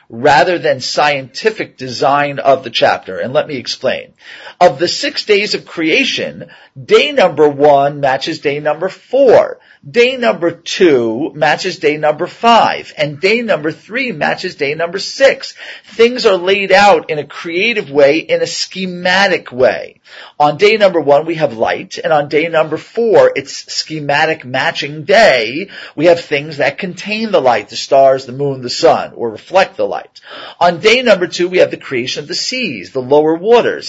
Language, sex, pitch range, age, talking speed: English, male, 150-210 Hz, 40-59, 175 wpm